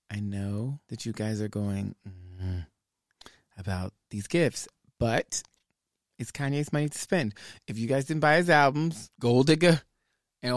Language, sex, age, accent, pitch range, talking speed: English, male, 30-49, American, 115-155 Hz, 160 wpm